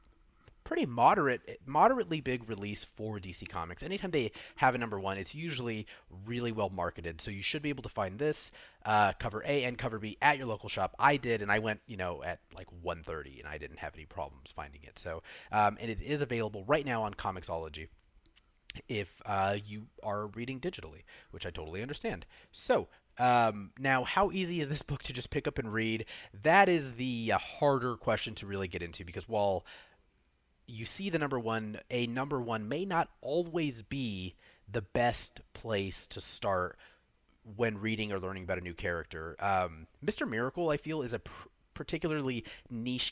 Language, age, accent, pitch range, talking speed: English, 30-49, American, 100-130 Hz, 190 wpm